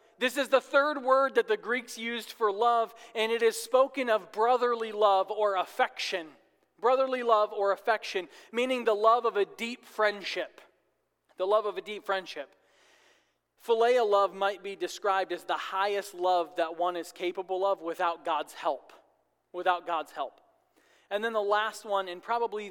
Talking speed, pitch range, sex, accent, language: 170 wpm, 185-240 Hz, male, American, English